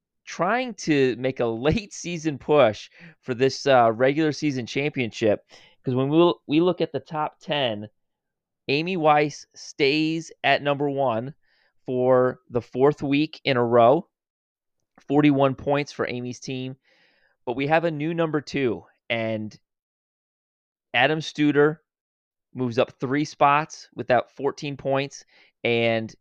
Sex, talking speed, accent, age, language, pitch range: male, 135 wpm, American, 30-49, English, 120-145 Hz